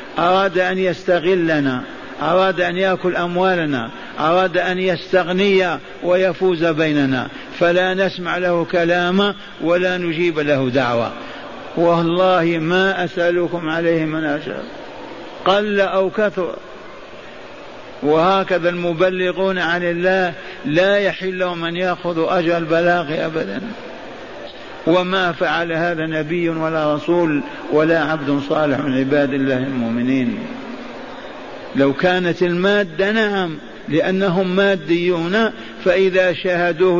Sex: male